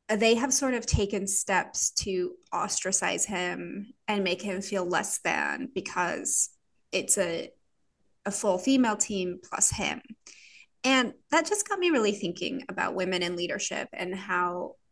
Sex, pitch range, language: female, 180-235 Hz, English